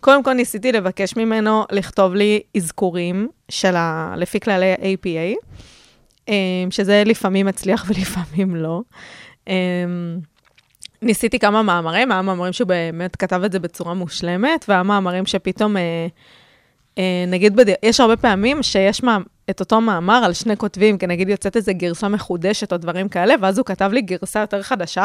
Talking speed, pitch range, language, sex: 145 wpm, 180-215 Hz, Hebrew, female